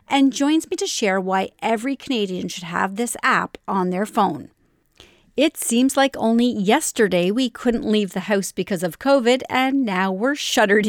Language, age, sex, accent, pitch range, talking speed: English, 40-59, female, American, 195-265 Hz, 175 wpm